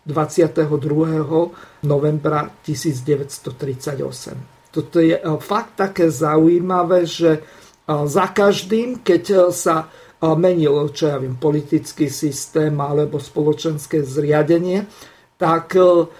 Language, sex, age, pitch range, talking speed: Slovak, male, 50-69, 150-180 Hz, 80 wpm